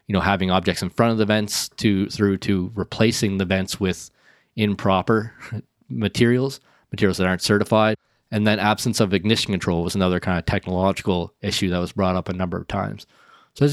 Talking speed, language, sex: 190 wpm, English, male